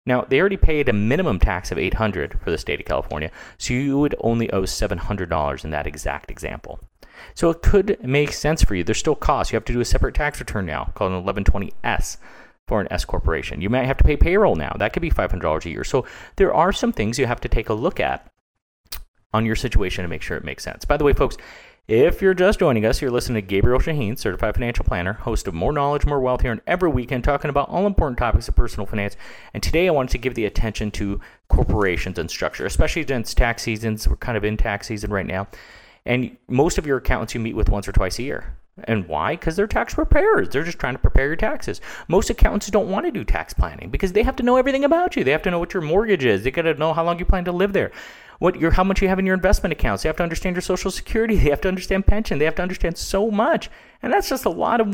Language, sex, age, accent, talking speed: English, male, 30-49, American, 260 wpm